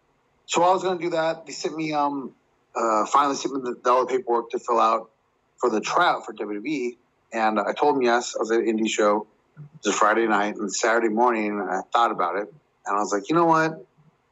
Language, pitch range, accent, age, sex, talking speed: English, 105-135 Hz, American, 30-49, male, 245 wpm